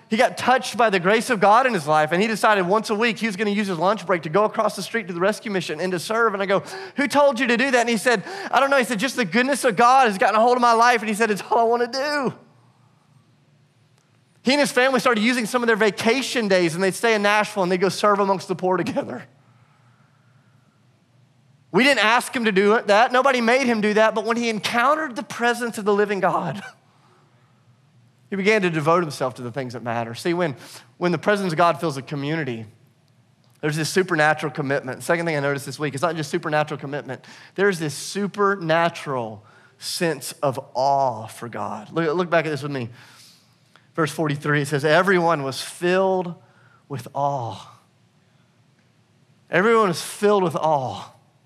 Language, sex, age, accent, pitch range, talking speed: English, male, 30-49, American, 140-220 Hz, 215 wpm